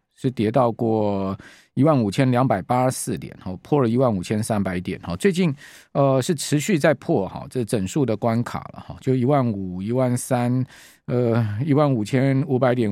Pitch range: 105-145 Hz